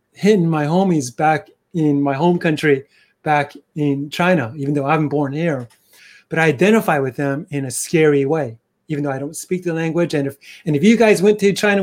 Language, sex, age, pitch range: English, male, 30-49, 145-190 Hz